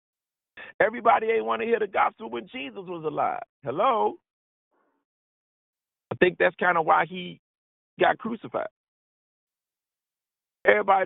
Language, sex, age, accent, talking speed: English, male, 50-69, American, 120 wpm